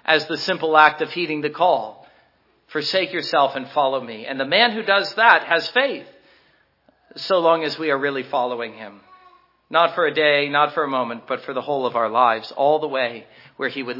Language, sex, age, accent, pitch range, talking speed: English, male, 50-69, American, 155-190 Hz, 215 wpm